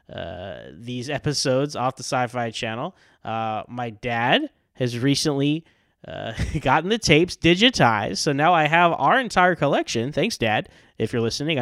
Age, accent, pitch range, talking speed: 20-39, American, 125-170 Hz, 150 wpm